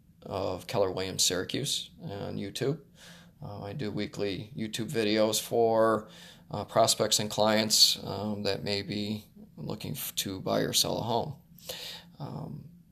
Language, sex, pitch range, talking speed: English, male, 105-125 Hz, 140 wpm